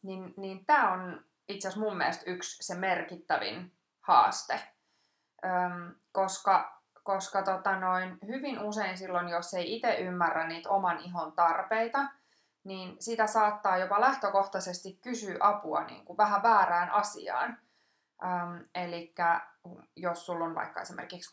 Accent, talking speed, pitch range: native, 125 wpm, 175-210 Hz